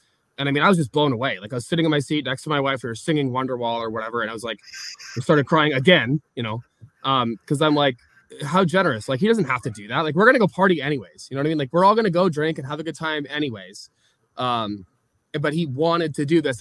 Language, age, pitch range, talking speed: English, 20-39, 125-150 Hz, 290 wpm